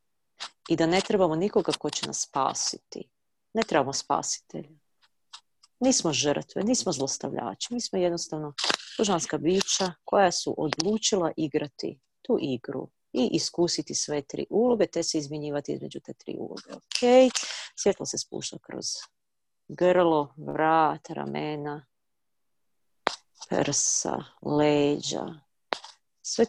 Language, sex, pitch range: Croatian, female, 150-185 Hz